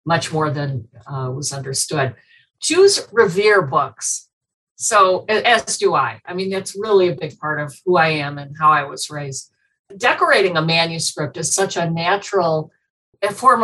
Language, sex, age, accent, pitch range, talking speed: English, female, 50-69, American, 155-200 Hz, 165 wpm